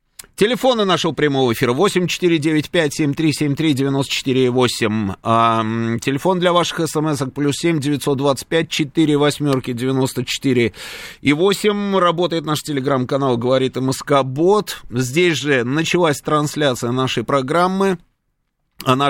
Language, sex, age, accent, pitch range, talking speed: Russian, male, 30-49, native, 125-155 Hz, 95 wpm